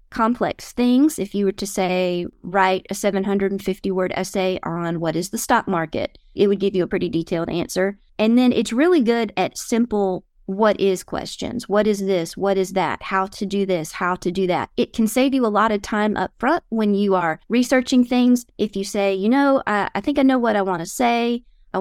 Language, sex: English, female